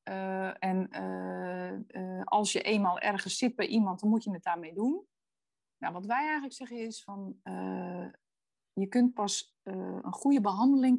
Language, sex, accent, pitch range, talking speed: Dutch, female, Dutch, 190-245 Hz, 165 wpm